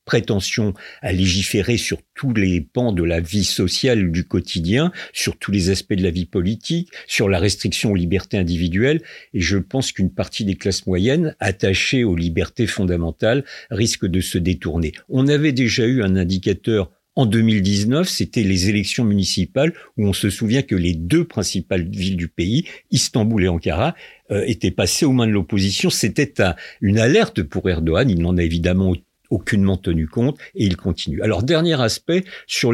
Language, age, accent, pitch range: French, 50-69, French, 95-120 Hz